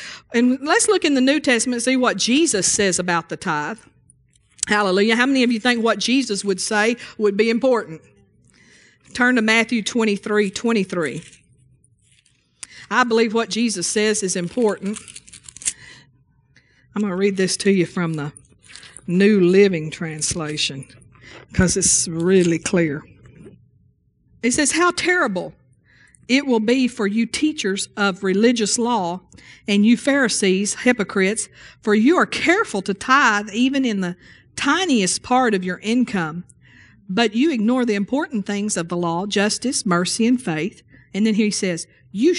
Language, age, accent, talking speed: English, 50-69, American, 150 wpm